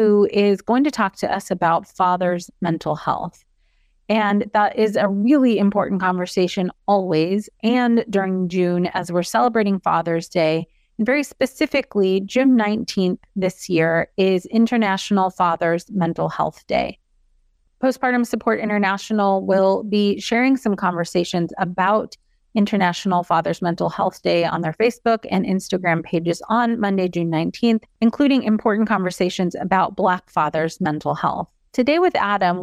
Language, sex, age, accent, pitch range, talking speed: English, female, 30-49, American, 180-225 Hz, 140 wpm